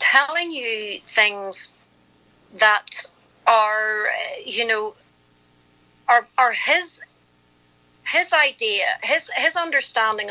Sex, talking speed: female, 95 wpm